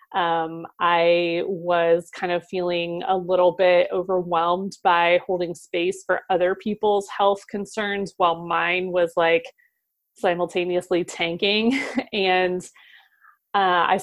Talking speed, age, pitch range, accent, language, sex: 115 wpm, 20-39, 175-205 Hz, American, English, female